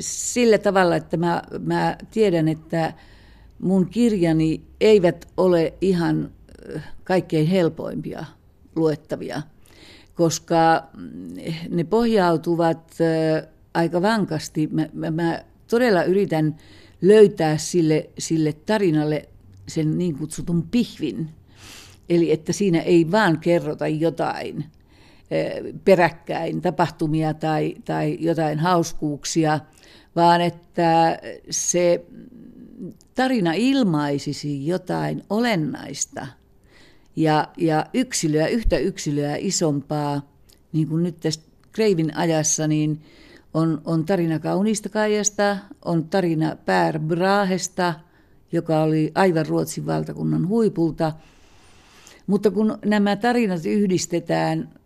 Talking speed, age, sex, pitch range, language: 90 wpm, 50-69, female, 155-185 Hz, Finnish